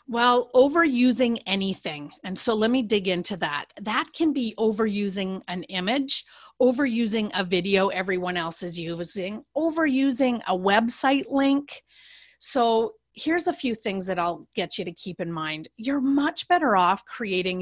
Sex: female